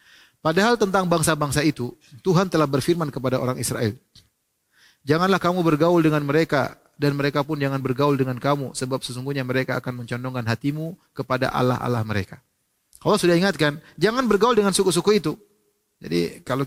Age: 30-49